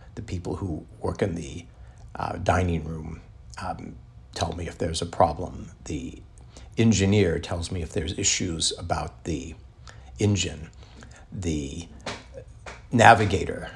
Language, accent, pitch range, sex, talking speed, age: English, American, 85-105 Hz, male, 120 wpm, 60-79